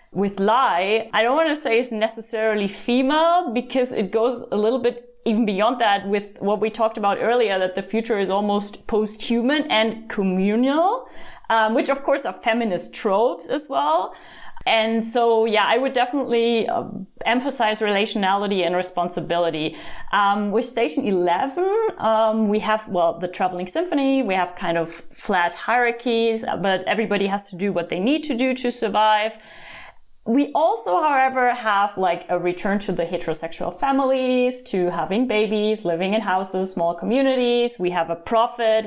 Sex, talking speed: female, 160 wpm